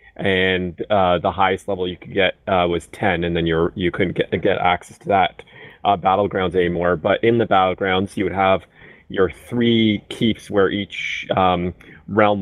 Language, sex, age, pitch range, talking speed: English, male, 30-49, 90-105 Hz, 185 wpm